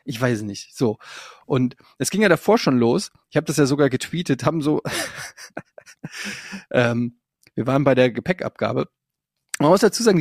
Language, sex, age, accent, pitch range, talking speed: German, male, 30-49, German, 120-150 Hz, 170 wpm